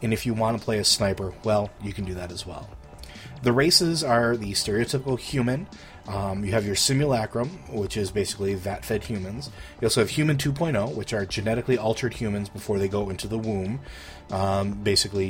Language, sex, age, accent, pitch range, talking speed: English, male, 30-49, American, 95-115 Hz, 190 wpm